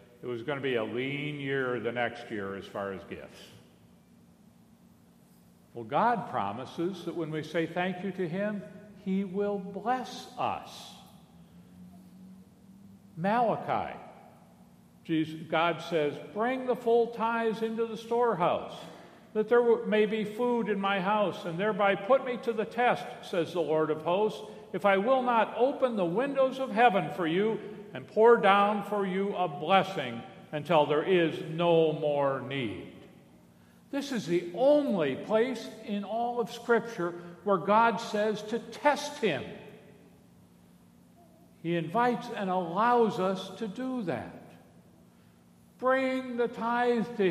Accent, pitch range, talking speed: American, 160-225 Hz, 140 wpm